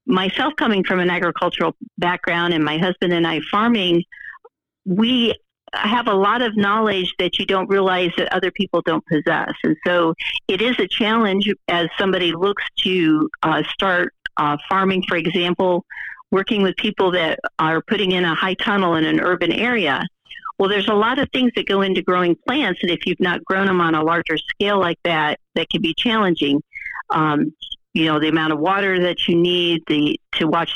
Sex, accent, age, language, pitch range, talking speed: female, American, 50-69, English, 170-210 Hz, 185 wpm